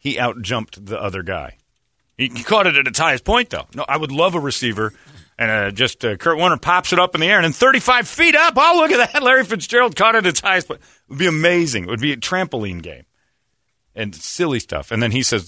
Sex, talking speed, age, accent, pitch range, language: male, 250 wpm, 40-59, American, 85-125 Hz, English